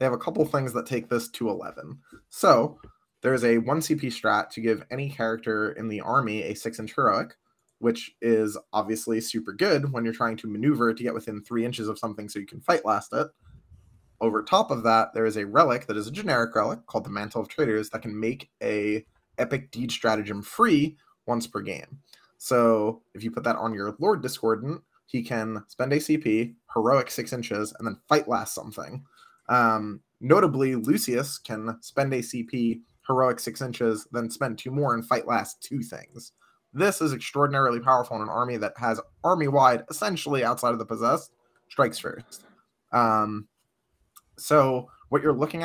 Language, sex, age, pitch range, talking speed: English, male, 20-39, 110-135 Hz, 190 wpm